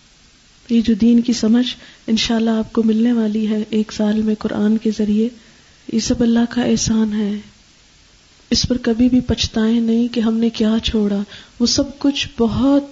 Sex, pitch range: female, 210-245 Hz